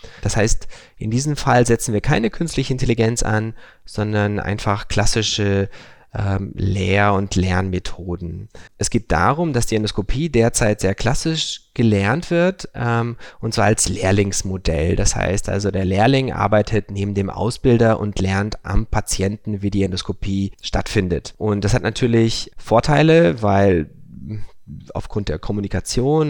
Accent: German